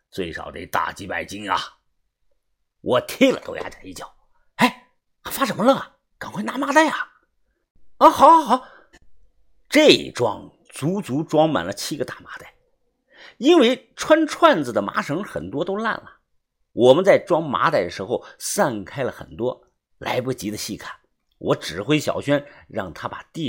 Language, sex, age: Chinese, male, 50-69